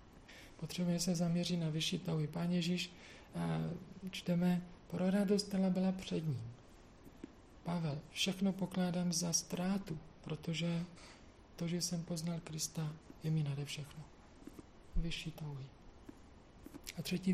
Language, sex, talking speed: Czech, male, 115 wpm